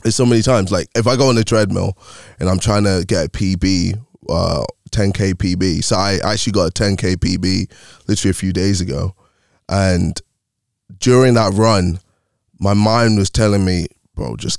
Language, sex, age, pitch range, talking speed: English, male, 20-39, 95-110 Hz, 185 wpm